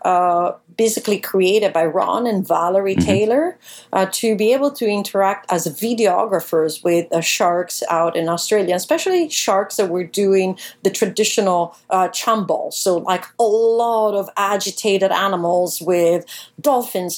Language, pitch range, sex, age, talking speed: English, 180-225 Hz, female, 40-59, 140 wpm